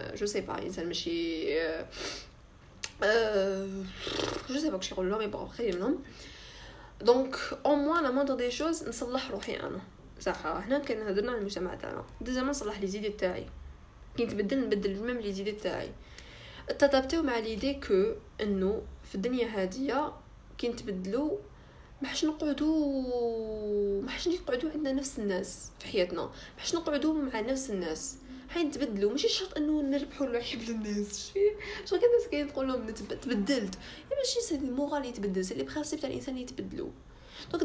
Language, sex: Arabic, female